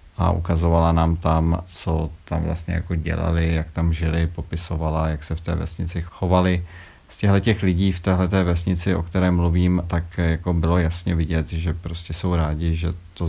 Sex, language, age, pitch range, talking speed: male, Czech, 40-59, 80-90 Hz, 175 wpm